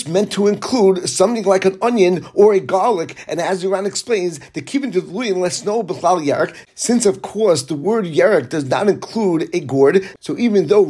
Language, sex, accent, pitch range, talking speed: English, male, American, 175-210 Hz, 195 wpm